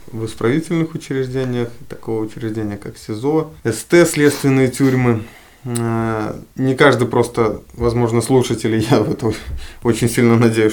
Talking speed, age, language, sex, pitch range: 115 wpm, 20-39, Russian, male, 110-125 Hz